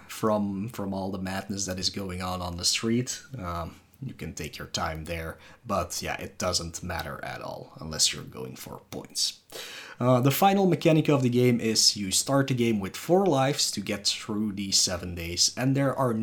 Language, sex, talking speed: English, male, 205 wpm